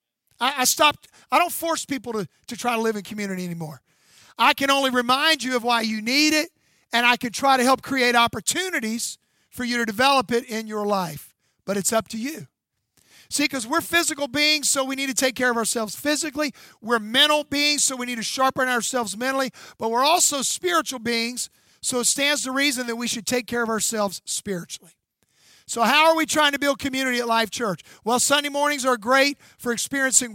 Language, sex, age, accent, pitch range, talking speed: English, male, 50-69, American, 225-280 Hz, 210 wpm